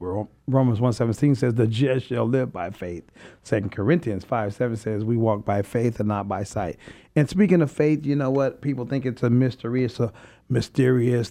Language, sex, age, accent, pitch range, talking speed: English, male, 40-59, American, 110-135 Hz, 200 wpm